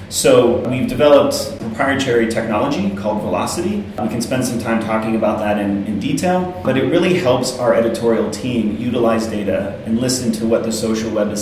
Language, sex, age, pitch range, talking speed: English, male, 30-49, 100-115 Hz, 185 wpm